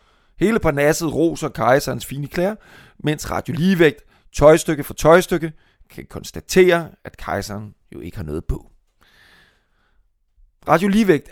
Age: 30-49